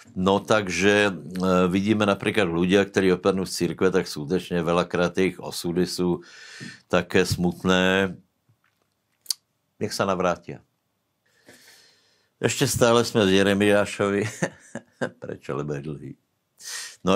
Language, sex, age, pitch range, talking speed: Slovak, male, 60-79, 85-95 Hz, 105 wpm